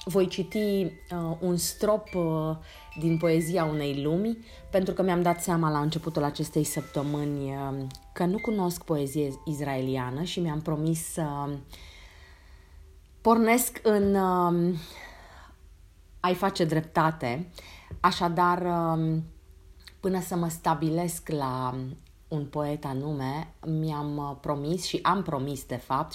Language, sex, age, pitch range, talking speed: Romanian, female, 30-49, 130-170 Hz, 110 wpm